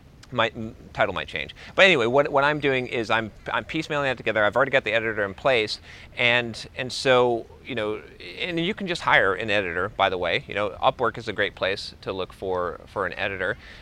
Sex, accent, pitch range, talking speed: male, American, 110-145 Hz, 220 wpm